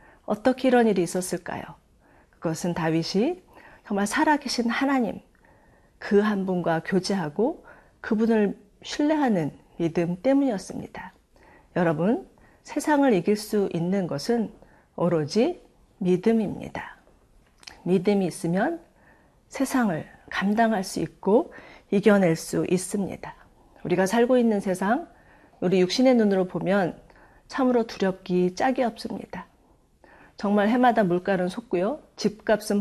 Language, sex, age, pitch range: Korean, female, 40-59, 180-240 Hz